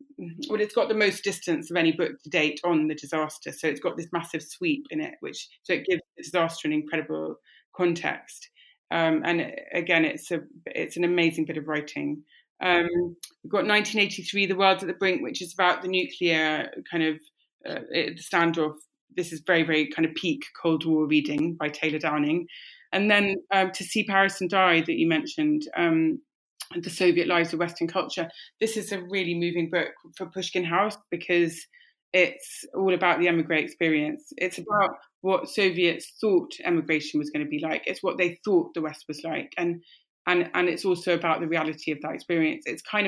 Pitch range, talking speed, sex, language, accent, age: 160-200 Hz, 195 wpm, female, English, British, 30-49